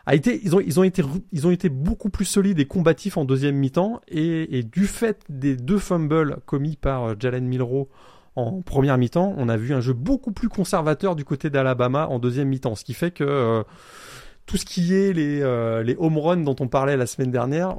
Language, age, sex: French, 20-39, male